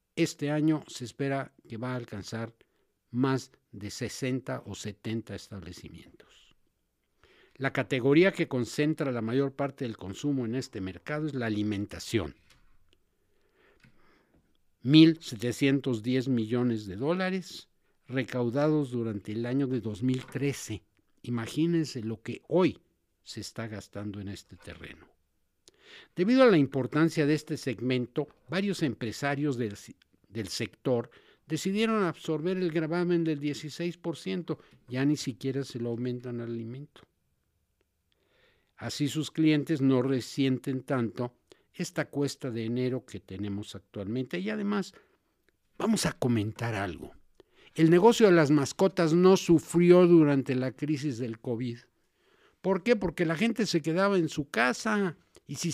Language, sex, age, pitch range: Spanish, male, 60-79, 115-160 Hz